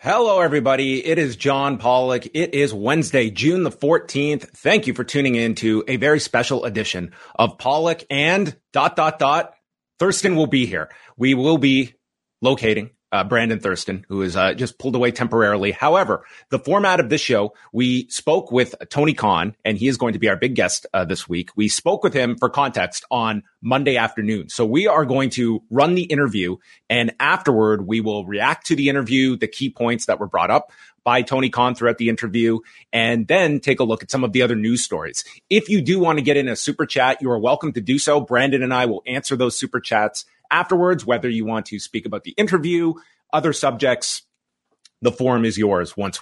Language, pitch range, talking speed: English, 115-150 Hz, 205 wpm